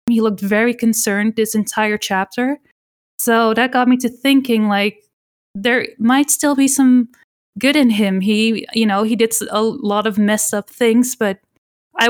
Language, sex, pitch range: English, female, 200-230 Hz